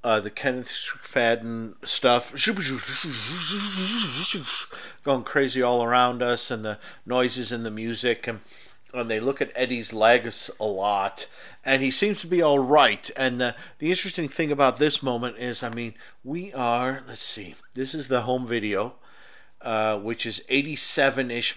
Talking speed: 155 wpm